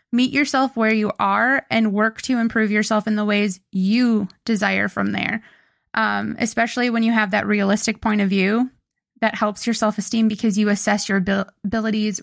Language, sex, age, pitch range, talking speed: English, female, 20-39, 200-230 Hz, 175 wpm